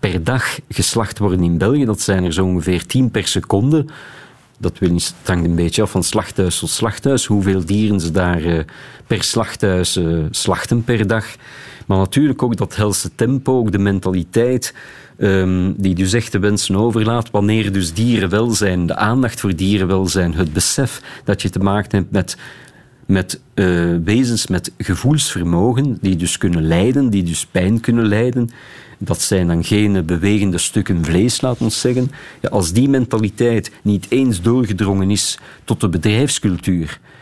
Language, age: Dutch, 50-69